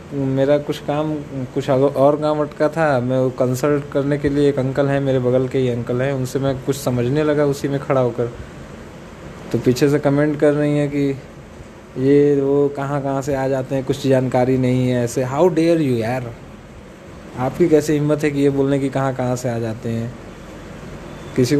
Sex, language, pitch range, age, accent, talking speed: male, Hindi, 125-150 Hz, 20-39, native, 195 wpm